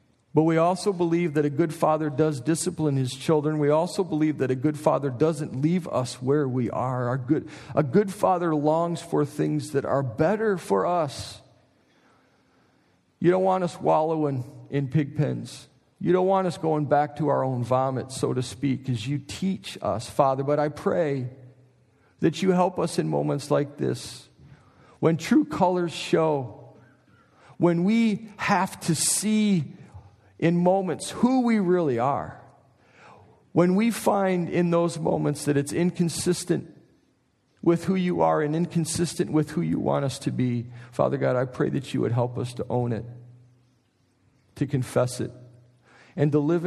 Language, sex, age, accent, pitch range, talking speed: English, male, 50-69, American, 125-170 Hz, 165 wpm